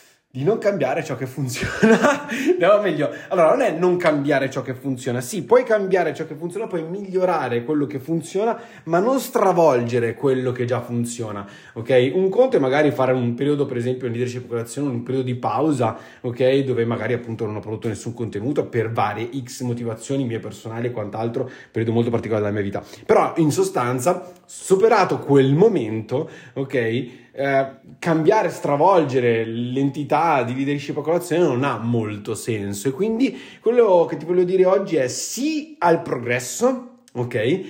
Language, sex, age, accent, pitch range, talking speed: Italian, male, 30-49, native, 125-180 Hz, 165 wpm